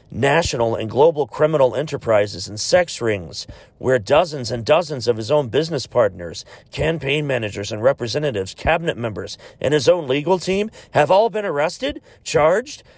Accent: American